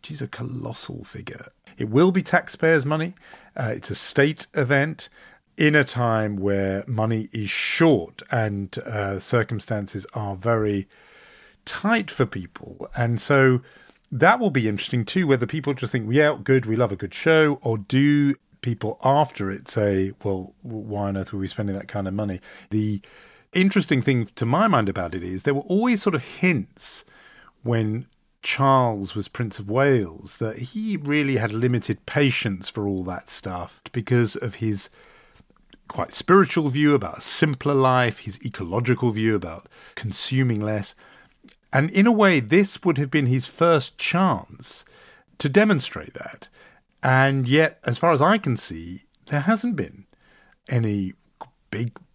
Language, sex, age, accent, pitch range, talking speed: English, male, 50-69, British, 105-145 Hz, 160 wpm